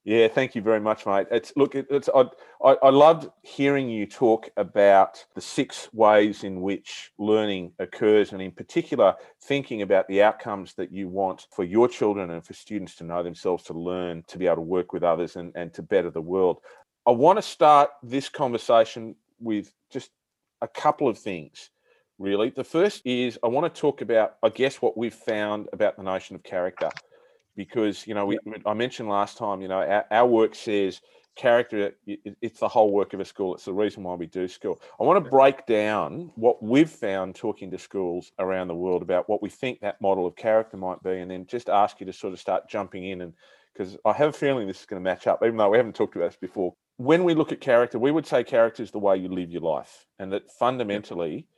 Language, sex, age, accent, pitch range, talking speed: English, male, 40-59, Australian, 95-125 Hz, 220 wpm